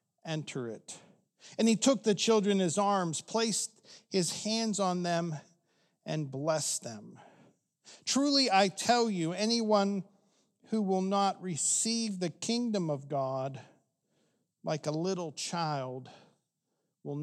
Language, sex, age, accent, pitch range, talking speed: English, male, 50-69, American, 150-200 Hz, 125 wpm